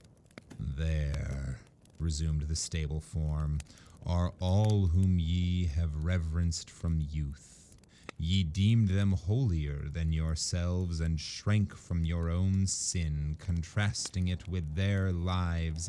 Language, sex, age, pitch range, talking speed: English, male, 30-49, 80-100 Hz, 115 wpm